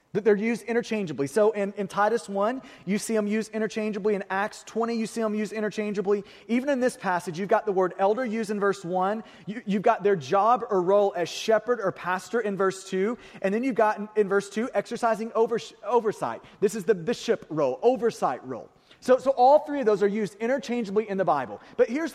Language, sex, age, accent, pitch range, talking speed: English, male, 30-49, American, 195-235 Hz, 220 wpm